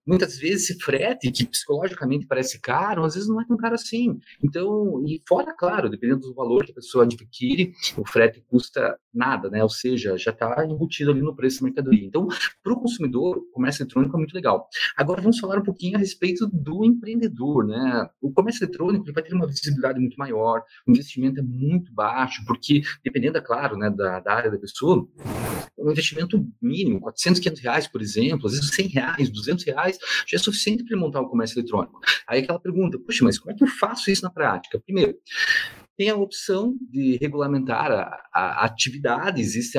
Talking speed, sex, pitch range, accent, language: 200 wpm, male, 115-190 Hz, Brazilian, Portuguese